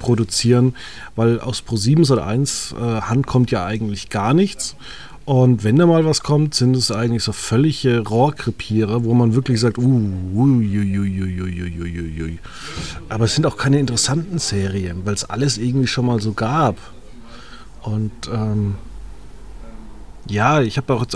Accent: German